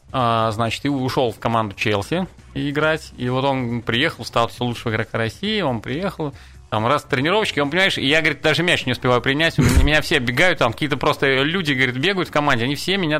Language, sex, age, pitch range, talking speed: Russian, male, 30-49, 115-150 Hz, 210 wpm